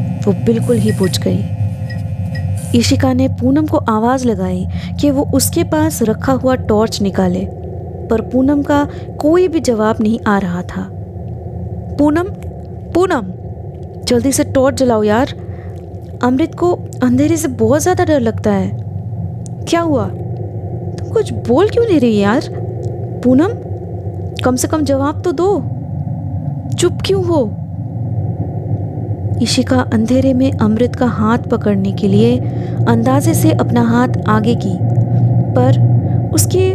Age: 20-39